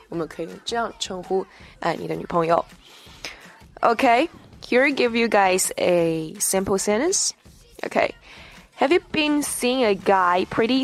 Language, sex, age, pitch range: Chinese, female, 10-29, 185-250 Hz